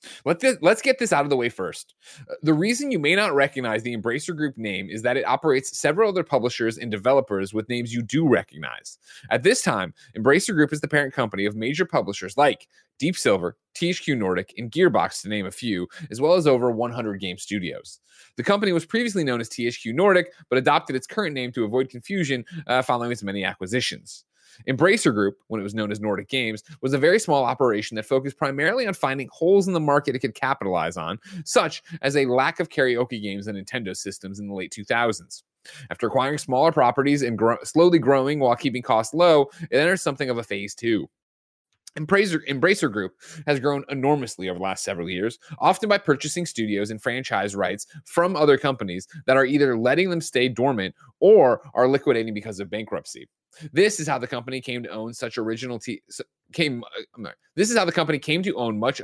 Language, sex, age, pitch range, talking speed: English, male, 20-39, 110-155 Hz, 200 wpm